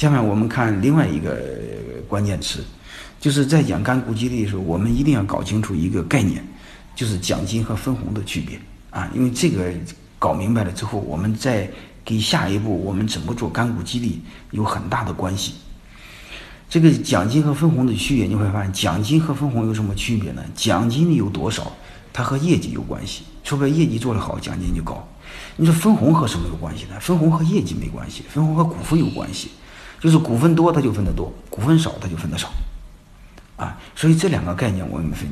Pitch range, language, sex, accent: 100-145 Hz, Chinese, male, native